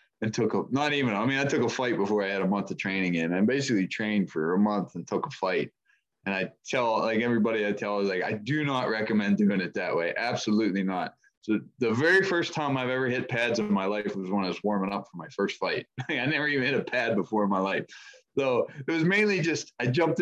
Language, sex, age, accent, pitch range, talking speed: English, male, 20-39, American, 105-130 Hz, 260 wpm